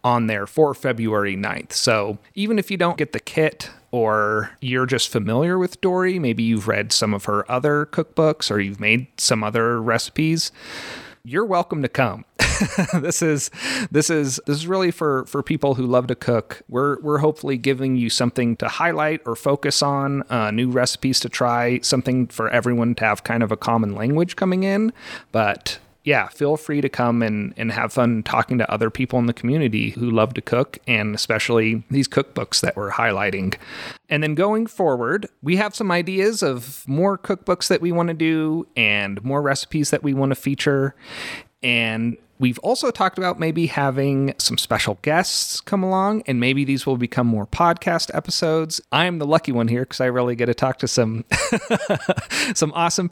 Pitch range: 120-165 Hz